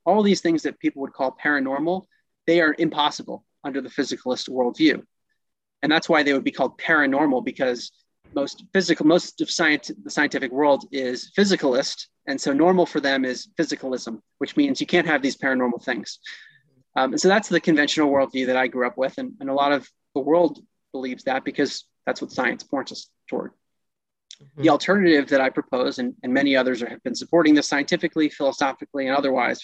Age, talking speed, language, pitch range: 30-49, 190 wpm, English, 135-170 Hz